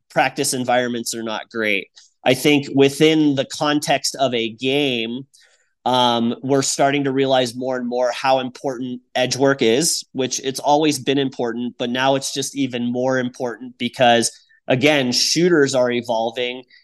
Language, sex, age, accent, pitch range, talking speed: English, male, 30-49, American, 120-135 Hz, 155 wpm